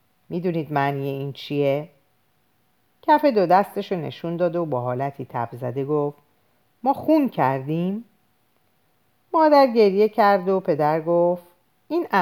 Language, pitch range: Persian, 130-200 Hz